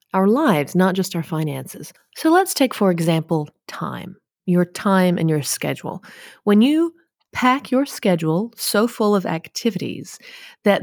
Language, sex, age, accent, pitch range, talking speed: English, female, 30-49, American, 170-205 Hz, 150 wpm